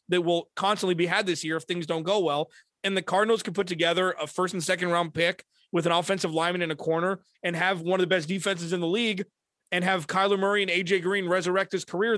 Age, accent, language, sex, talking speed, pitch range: 30-49, American, English, male, 250 wpm, 160-195 Hz